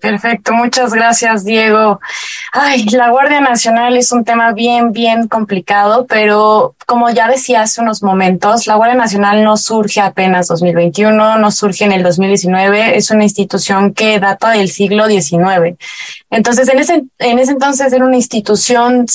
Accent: Mexican